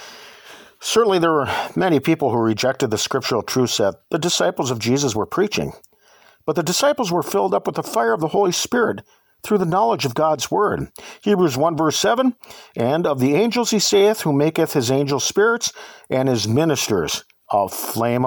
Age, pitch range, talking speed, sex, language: 50-69, 145-225 Hz, 185 wpm, male, English